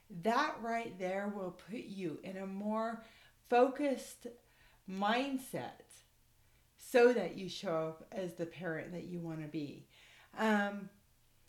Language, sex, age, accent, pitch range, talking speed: English, female, 40-59, American, 165-245 Hz, 130 wpm